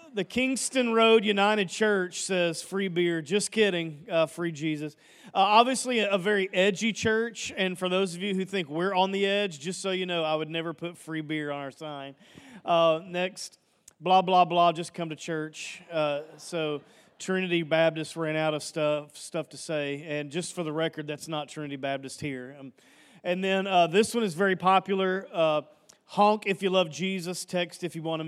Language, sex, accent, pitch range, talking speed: English, male, American, 155-195 Hz, 195 wpm